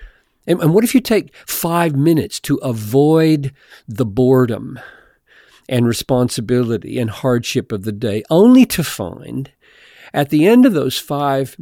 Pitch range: 120-170 Hz